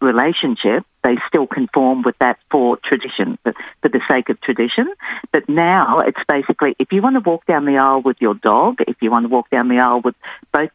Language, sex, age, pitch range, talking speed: English, female, 50-69, 125-155 Hz, 220 wpm